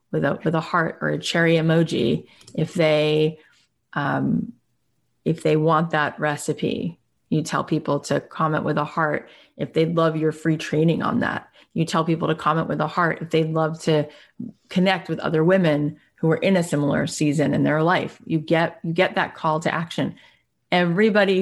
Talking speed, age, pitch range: 190 wpm, 30-49, 155-185 Hz